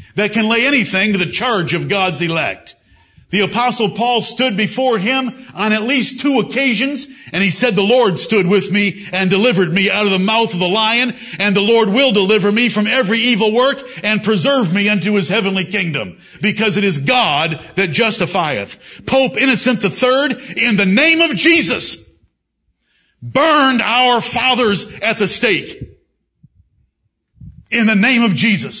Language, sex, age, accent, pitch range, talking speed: English, male, 60-79, American, 205-270 Hz, 170 wpm